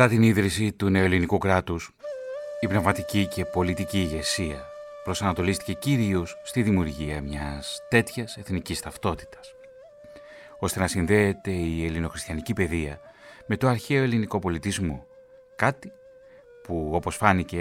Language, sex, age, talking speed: Greek, male, 30-49, 115 wpm